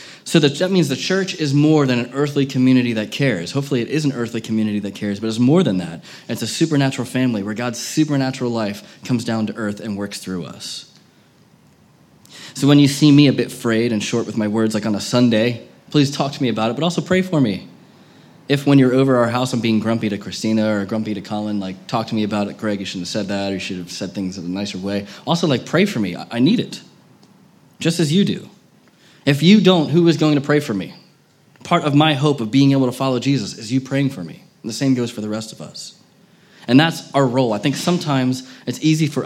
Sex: male